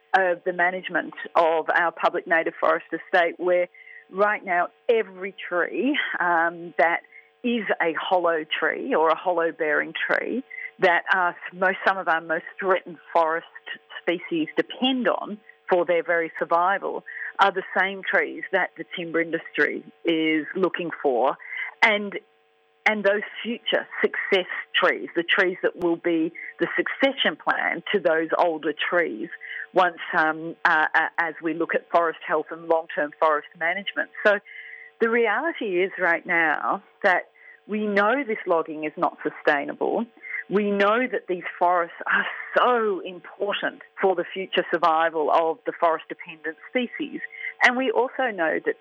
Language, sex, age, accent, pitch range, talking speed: English, female, 40-59, Australian, 165-210 Hz, 145 wpm